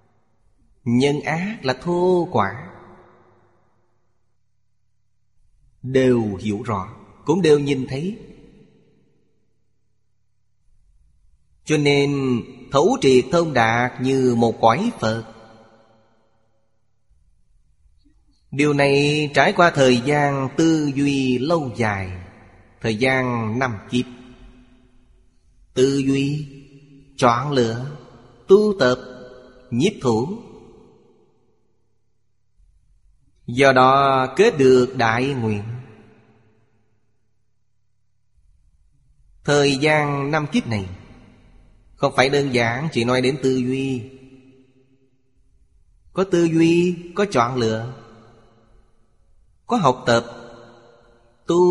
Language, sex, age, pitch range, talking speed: Vietnamese, male, 20-39, 110-135 Hz, 85 wpm